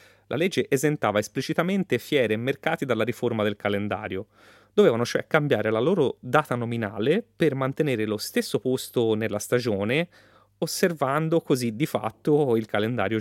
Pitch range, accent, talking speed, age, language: 105-140 Hz, native, 140 wpm, 30-49, Italian